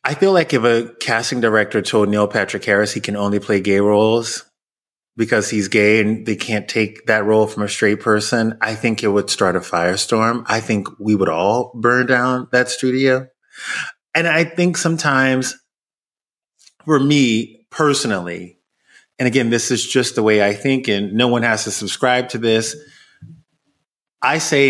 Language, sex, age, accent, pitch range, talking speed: English, male, 30-49, American, 105-130 Hz, 175 wpm